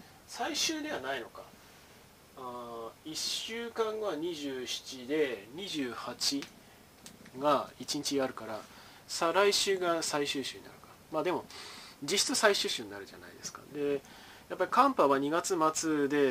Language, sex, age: Japanese, male, 20-39